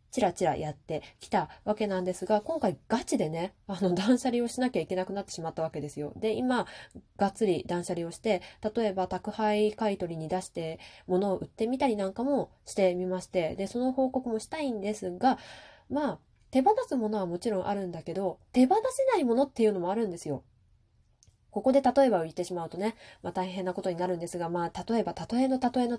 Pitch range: 175-250 Hz